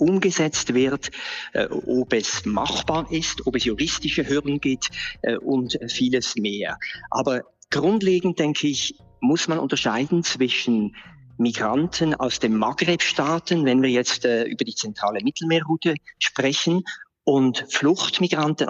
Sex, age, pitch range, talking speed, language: male, 50-69, 130-175 Hz, 115 wpm, German